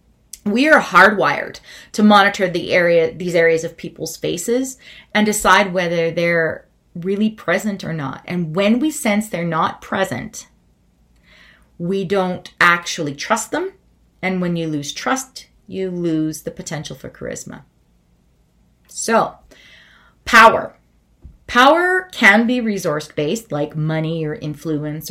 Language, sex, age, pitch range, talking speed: English, female, 30-49, 160-210 Hz, 125 wpm